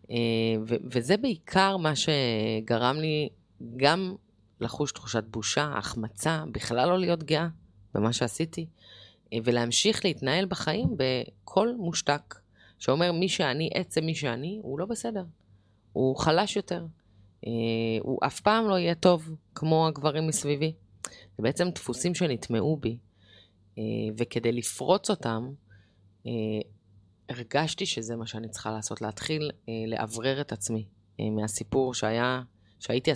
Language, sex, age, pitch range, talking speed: Hebrew, female, 30-49, 110-155 Hz, 115 wpm